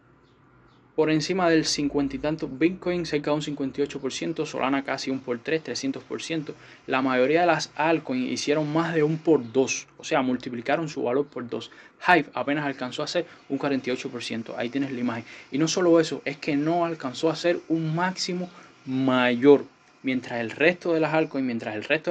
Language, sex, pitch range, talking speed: English, male, 125-155 Hz, 185 wpm